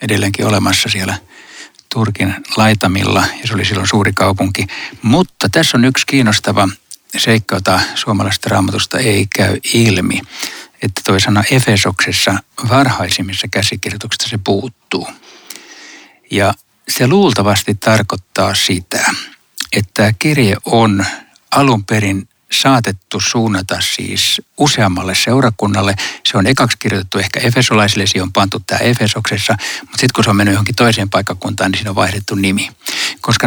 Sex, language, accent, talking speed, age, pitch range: male, Finnish, native, 125 wpm, 60-79, 95-115 Hz